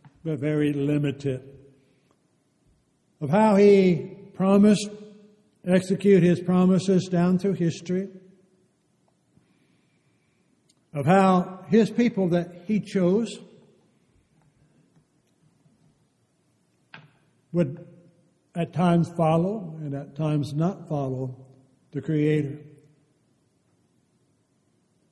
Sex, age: male, 60-79